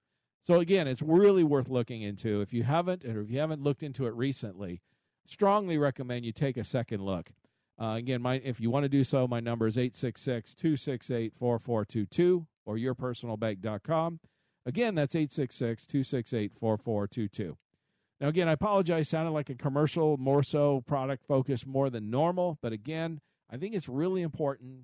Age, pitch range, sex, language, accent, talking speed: 50-69, 115-155 Hz, male, English, American, 170 wpm